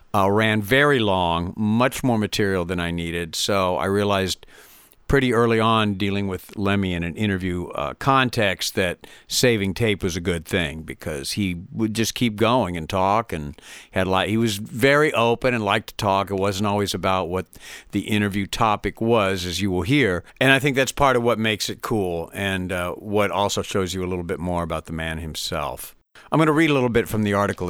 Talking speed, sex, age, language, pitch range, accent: 210 wpm, male, 50-69, English, 95-115 Hz, American